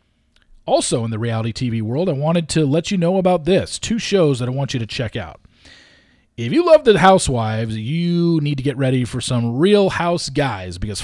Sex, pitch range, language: male, 125-190 Hz, English